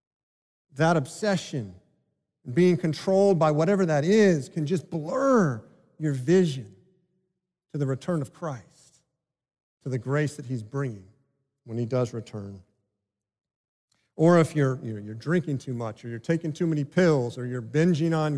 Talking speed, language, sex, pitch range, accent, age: 145 wpm, English, male, 150-185 Hz, American, 40-59